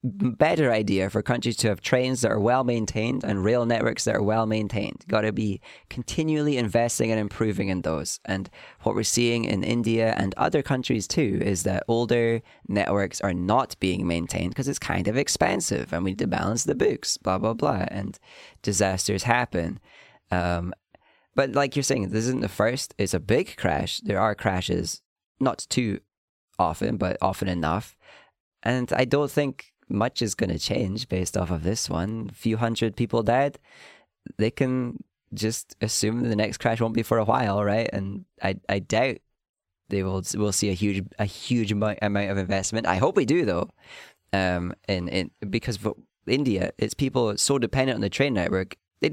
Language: English